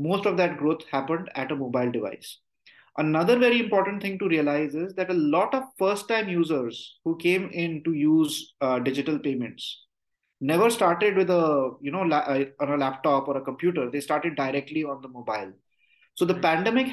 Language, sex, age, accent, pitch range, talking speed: Hindi, male, 30-49, native, 145-195 Hz, 190 wpm